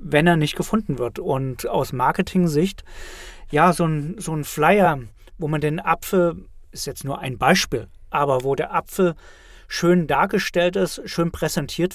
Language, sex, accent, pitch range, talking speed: German, male, German, 140-180 Hz, 155 wpm